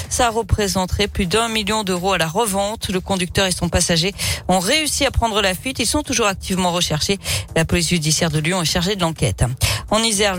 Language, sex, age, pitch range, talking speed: French, female, 40-59, 175-215 Hz, 210 wpm